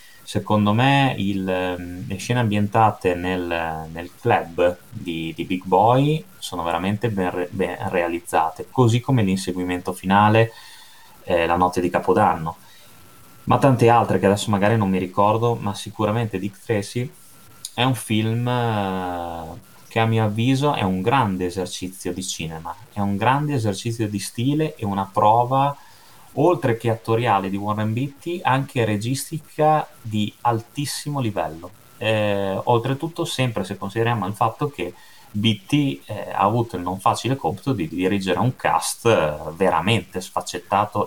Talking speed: 140 wpm